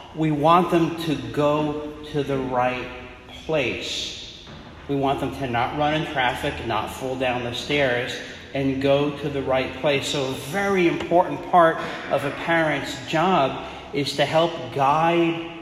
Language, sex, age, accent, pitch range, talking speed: English, male, 40-59, American, 125-155 Hz, 160 wpm